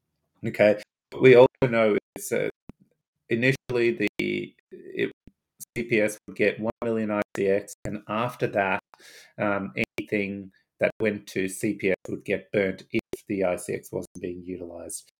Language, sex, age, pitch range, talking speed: English, male, 30-49, 95-110 Hz, 130 wpm